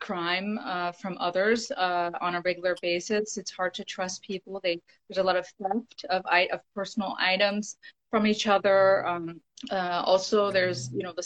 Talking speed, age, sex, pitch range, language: 180 wpm, 30-49, female, 180-220 Hz, English